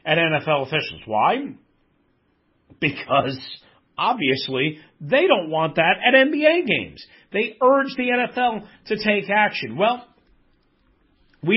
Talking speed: 115 wpm